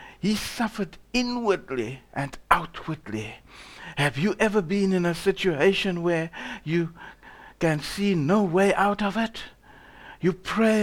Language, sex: English, male